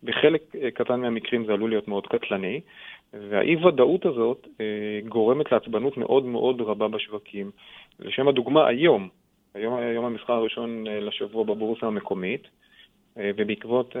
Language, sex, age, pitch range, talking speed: Hebrew, male, 30-49, 105-125 Hz, 115 wpm